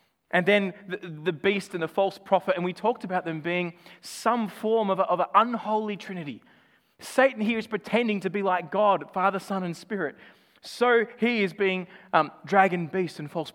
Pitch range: 170-210 Hz